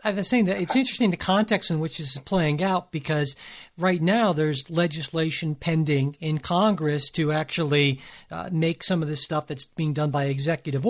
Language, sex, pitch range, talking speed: English, male, 150-185 Hz, 195 wpm